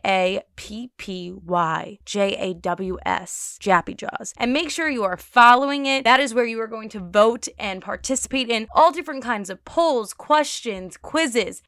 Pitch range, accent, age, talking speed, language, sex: 185-250 Hz, American, 20-39, 180 wpm, English, female